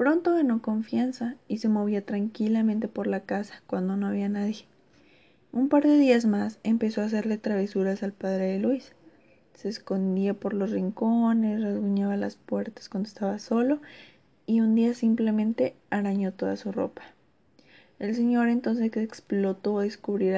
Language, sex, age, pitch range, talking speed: Spanish, female, 20-39, 200-230 Hz, 155 wpm